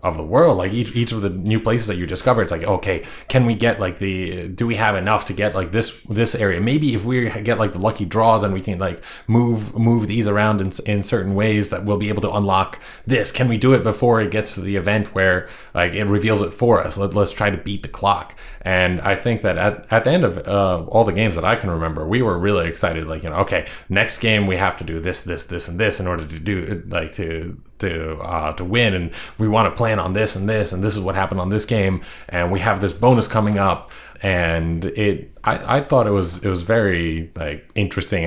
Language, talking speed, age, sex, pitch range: English, 260 wpm, 20-39, male, 85-110 Hz